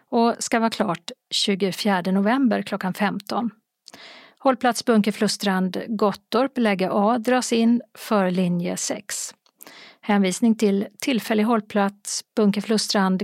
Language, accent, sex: Swedish, native, female